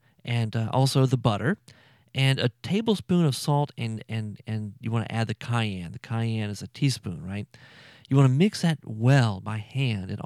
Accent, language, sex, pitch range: American, English, male, 115-140 Hz